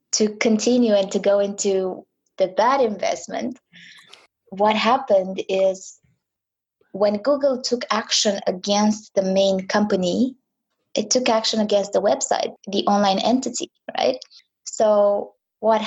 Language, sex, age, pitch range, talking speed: English, female, 20-39, 190-235 Hz, 120 wpm